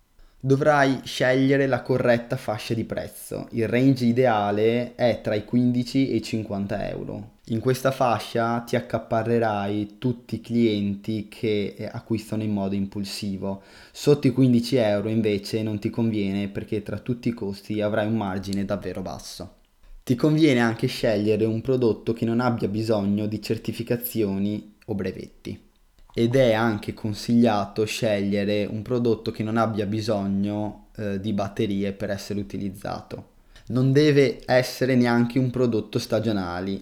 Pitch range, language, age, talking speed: 105-120 Hz, Italian, 20-39, 140 wpm